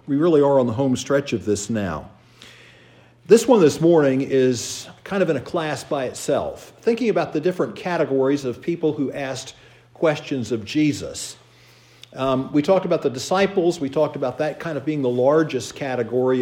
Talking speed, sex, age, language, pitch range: 185 wpm, male, 50-69, English, 130-160 Hz